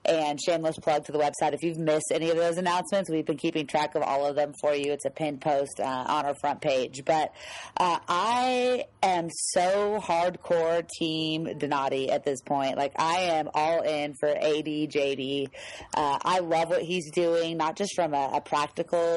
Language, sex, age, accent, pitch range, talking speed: English, female, 30-49, American, 150-175 Hz, 195 wpm